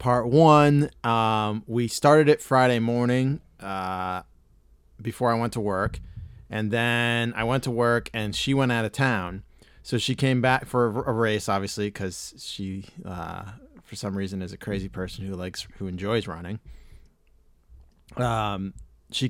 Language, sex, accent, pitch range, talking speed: English, male, American, 95-125 Hz, 160 wpm